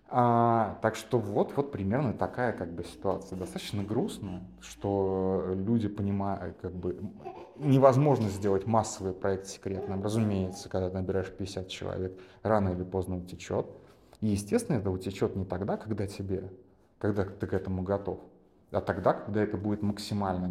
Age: 20-39